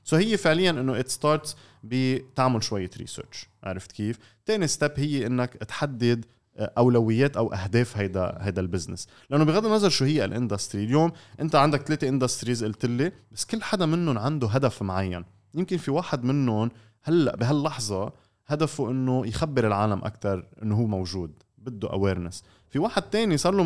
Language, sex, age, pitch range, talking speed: Arabic, male, 20-39, 105-145 Hz, 155 wpm